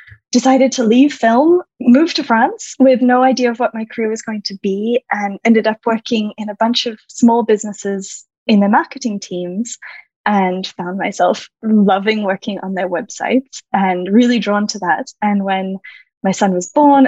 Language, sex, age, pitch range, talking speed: English, female, 10-29, 190-245 Hz, 180 wpm